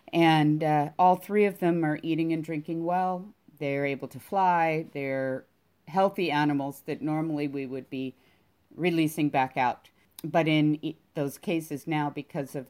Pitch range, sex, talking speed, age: 140-170 Hz, female, 155 wpm, 50-69